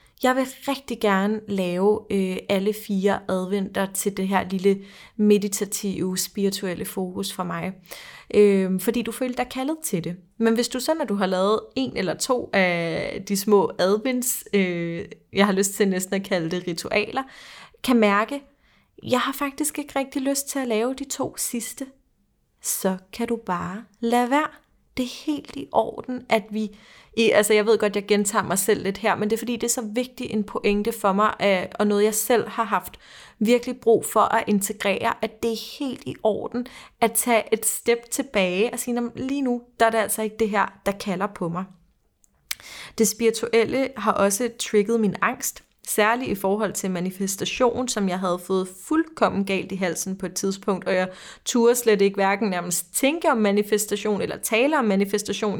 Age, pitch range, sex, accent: 30-49, 190-235 Hz, female, native